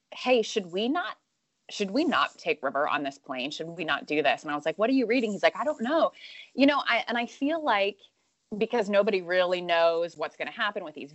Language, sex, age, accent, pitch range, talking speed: English, female, 20-39, American, 175-230 Hz, 255 wpm